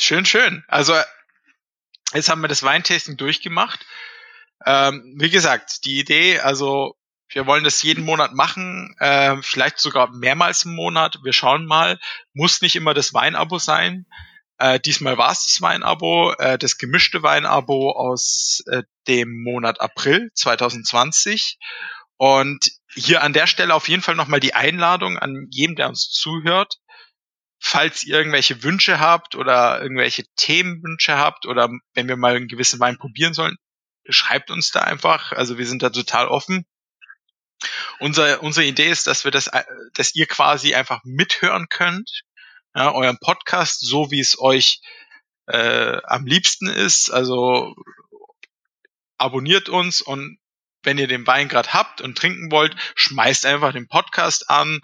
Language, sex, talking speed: German, male, 150 wpm